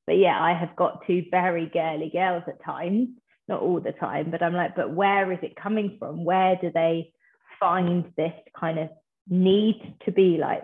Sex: female